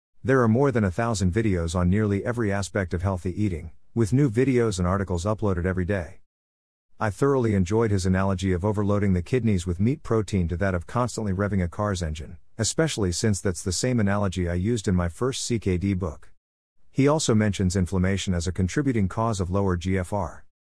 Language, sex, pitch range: English, male, 90-115 Hz